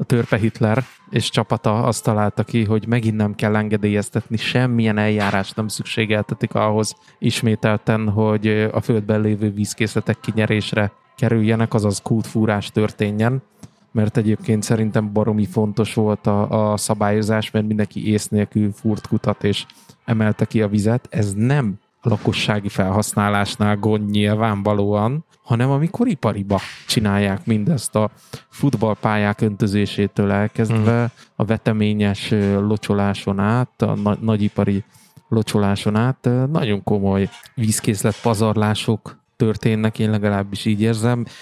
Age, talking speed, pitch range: 20-39, 115 wpm, 105-115 Hz